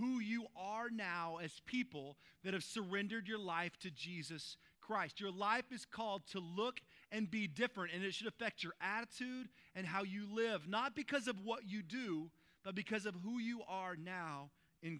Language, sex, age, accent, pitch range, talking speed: English, male, 40-59, American, 160-215 Hz, 190 wpm